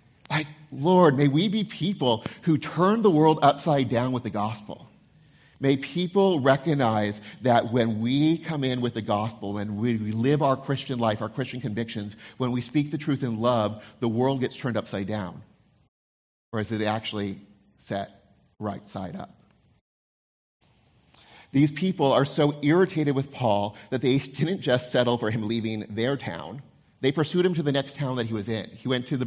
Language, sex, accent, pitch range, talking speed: English, male, American, 105-140 Hz, 180 wpm